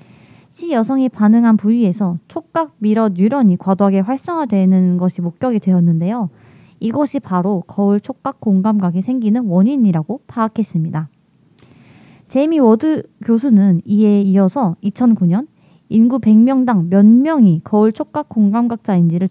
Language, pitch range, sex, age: Korean, 190-250 Hz, female, 20-39